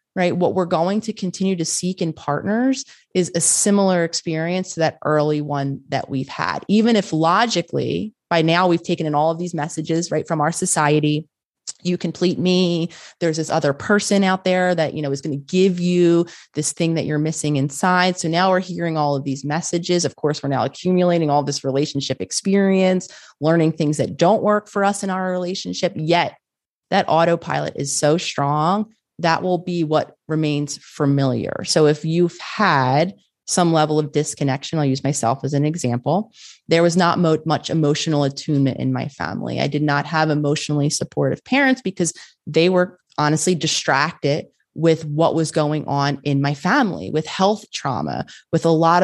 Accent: American